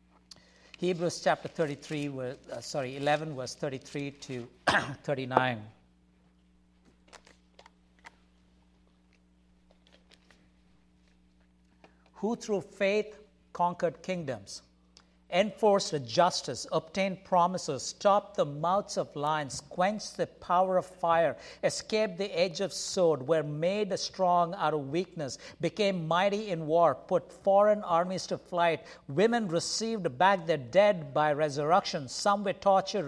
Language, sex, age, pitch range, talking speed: English, male, 60-79, 145-195 Hz, 105 wpm